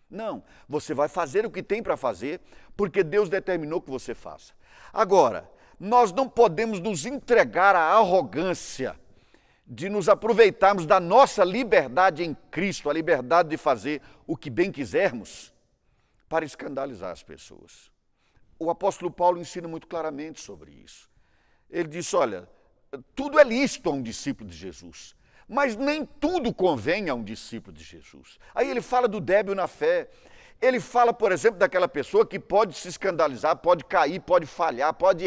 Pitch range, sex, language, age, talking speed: 145-220 Hz, male, Portuguese, 50-69, 160 wpm